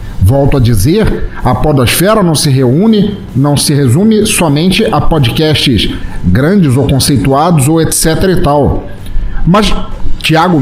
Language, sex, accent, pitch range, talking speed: Portuguese, male, Brazilian, 130-190 Hz, 130 wpm